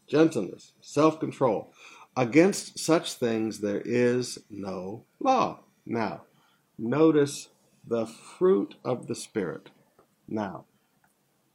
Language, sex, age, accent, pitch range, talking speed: English, male, 60-79, American, 120-165 Hz, 90 wpm